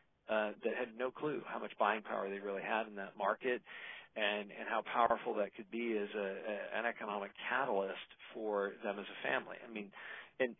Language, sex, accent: English, male, American